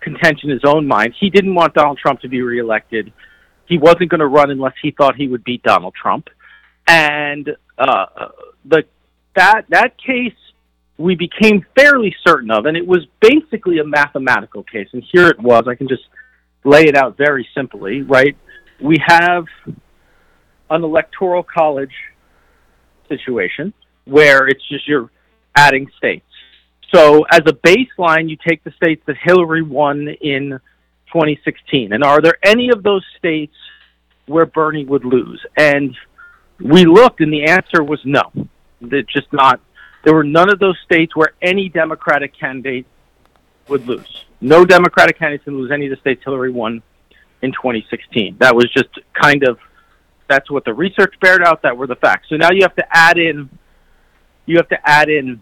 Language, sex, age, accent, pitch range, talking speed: English, male, 50-69, American, 135-170 Hz, 170 wpm